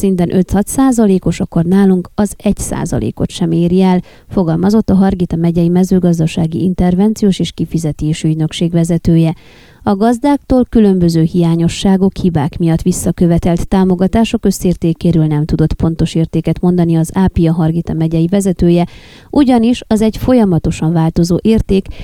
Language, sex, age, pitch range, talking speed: Hungarian, female, 30-49, 165-200 Hz, 125 wpm